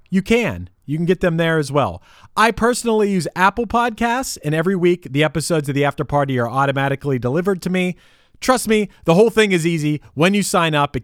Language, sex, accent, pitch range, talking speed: English, male, American, 140-200 Hz, 215 wpm